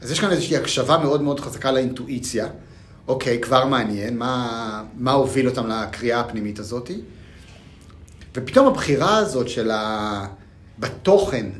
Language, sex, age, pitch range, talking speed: Hebrew, male, 40-59, 105-145 Hz, 125 wpm